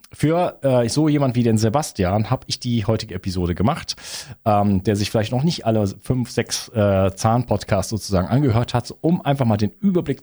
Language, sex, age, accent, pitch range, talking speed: German, male, 40-59, German, 100-130 Hz, 190 wpm